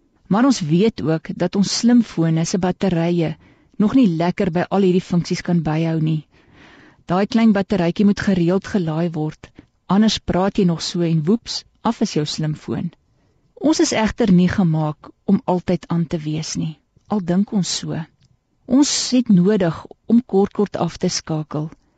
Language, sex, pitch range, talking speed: Dutch, female, 160-210 Hz, 170 wpm